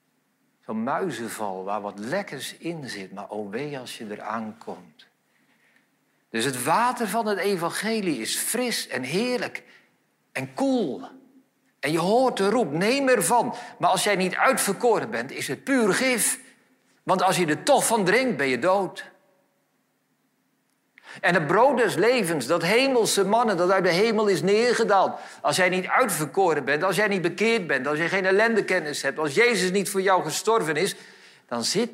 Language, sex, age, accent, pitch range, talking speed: Dutch, male, 60-79, Dutch, 150-225 Hz, 170 wpm